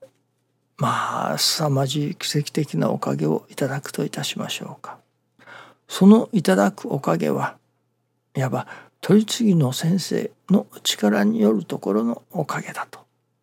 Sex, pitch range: male, 140-200 Hz